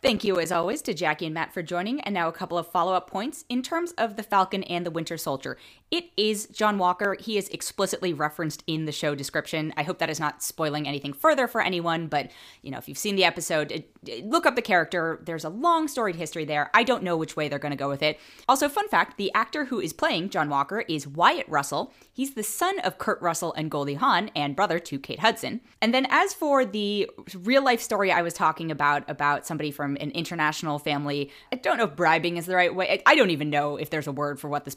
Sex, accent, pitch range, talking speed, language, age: female, American, 150-225 Hz, 245 wpm, English, 20-39